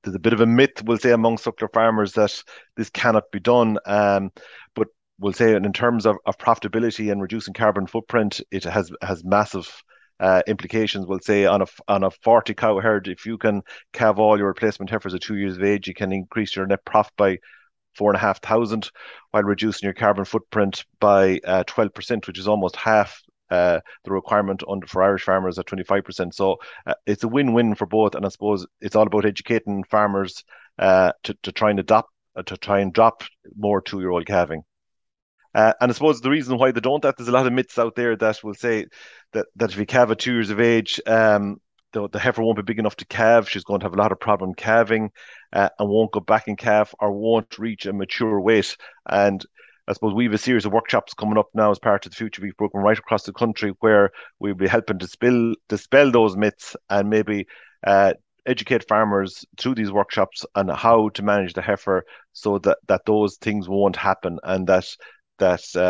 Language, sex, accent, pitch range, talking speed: English, male, Irish, 95-110 Hz, 220 wpm